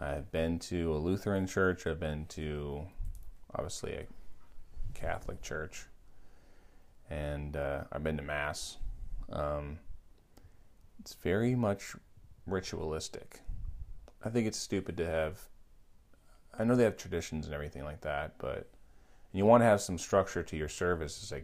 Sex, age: male, 30-49